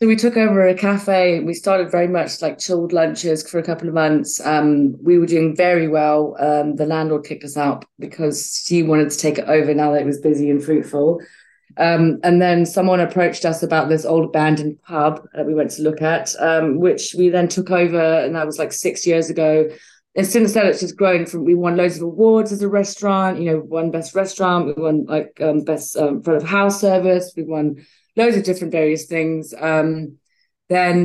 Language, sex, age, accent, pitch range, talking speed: English, female, 30-49, British, 155-180 Hz, 220 wpm